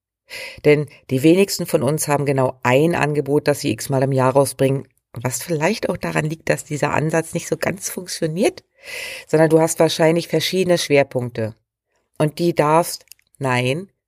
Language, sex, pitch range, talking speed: German, female, 130-180 Hz, 160 wpm